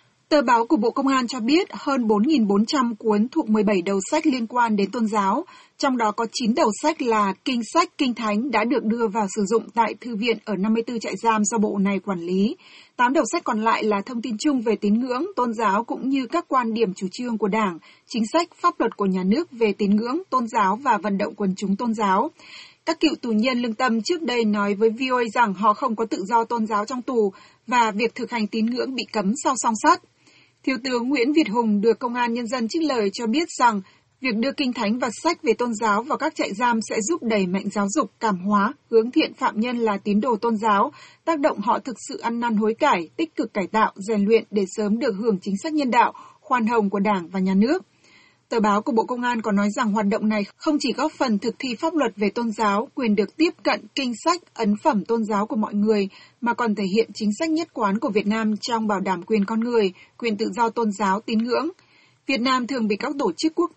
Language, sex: Vietnamese, female